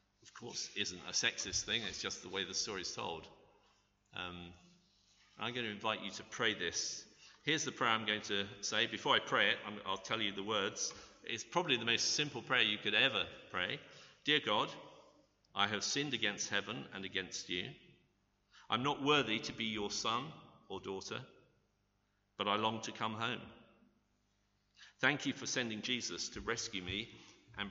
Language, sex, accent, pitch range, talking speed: English, male, British, 100-110 Hz, 180 wpm